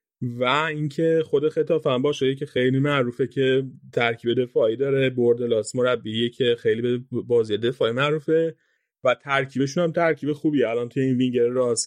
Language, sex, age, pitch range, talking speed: Persian, male, 30-49, 120-145 Hz, 150 wpm